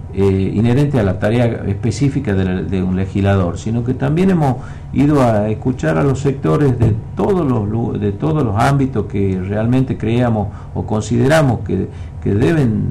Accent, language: Argentinian, Spanish